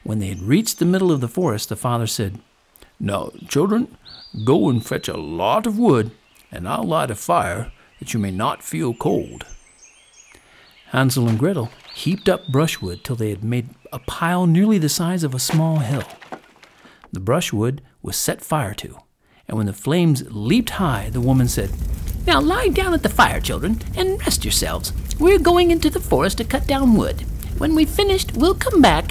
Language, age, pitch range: English, 50-69, 95-150 Hz